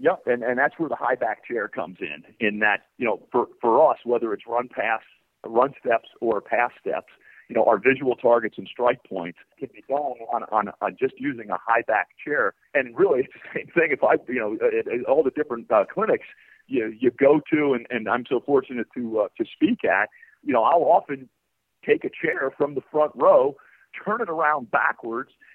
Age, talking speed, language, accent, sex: 50-69, 215 wpm, English, American, male